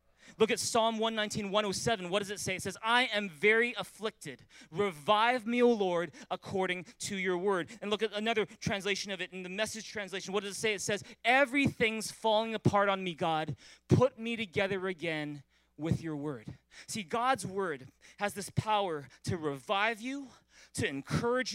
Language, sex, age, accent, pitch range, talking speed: English, male, 20-39, American, 180-230 Hz, 180 wpm